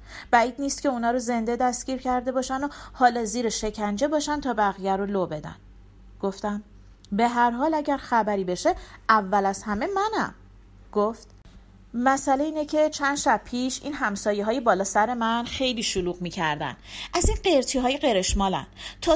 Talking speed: 155 wpm